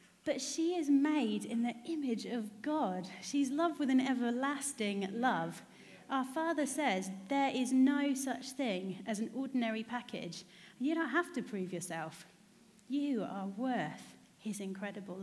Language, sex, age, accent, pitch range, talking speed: English, female, 30-49, British, 185-250 Hz, 150 wpm